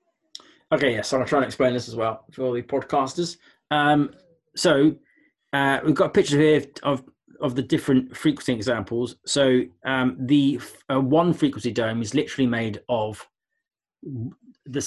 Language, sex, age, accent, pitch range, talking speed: English, male, 20-39, British, 115-145 Hz, 160 wpm